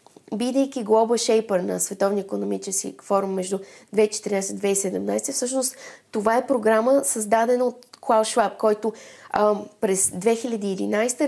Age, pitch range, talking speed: 20-39, 195-245 Hz, 115 wpm